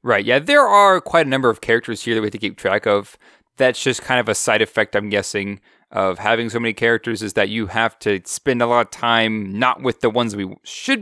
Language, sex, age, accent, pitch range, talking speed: English, male, 20-39, American, 105-140 Hz, 255 wpm